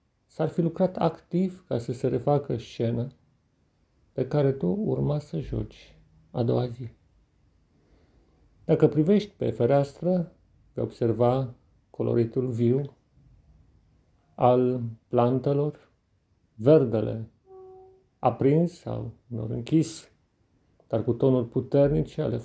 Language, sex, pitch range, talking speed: Romanian, male, 115-150 Hz, 100 wpm